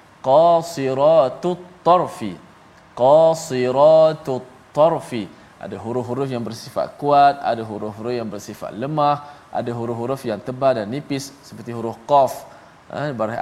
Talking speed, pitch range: 105 wpm, 120-160 Hz